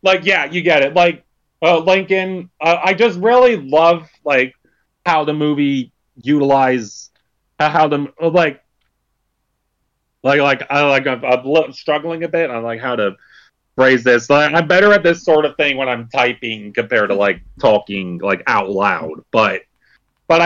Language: English